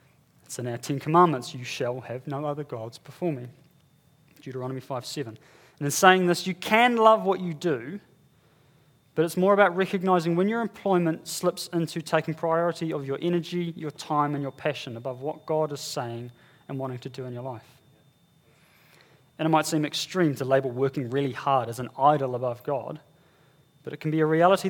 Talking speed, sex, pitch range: 190 wpm, male, 135-165 Hz